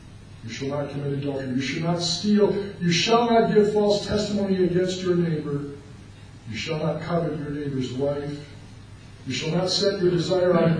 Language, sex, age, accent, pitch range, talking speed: English, male, 50-69, American, 125-185 Hz, 185 wpm